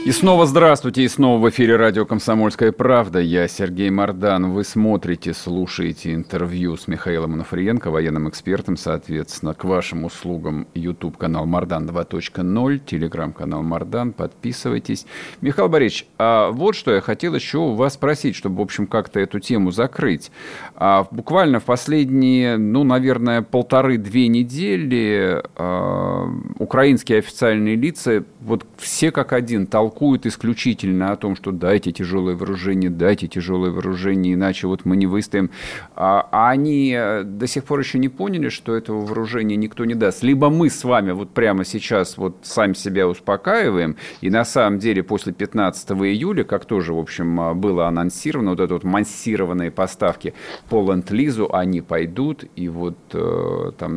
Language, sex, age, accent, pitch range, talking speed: Russian, male, 50-69, native, 90-120 Hz, 145 wpm